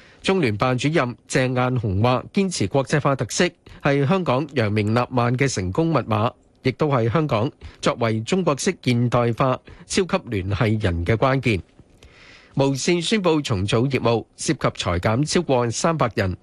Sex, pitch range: male, 115-150 Hz